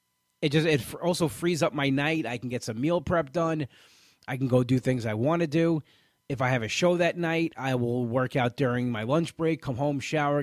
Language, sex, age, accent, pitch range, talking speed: English, male, 30-49, American, 125-155 Hz, 240 wpm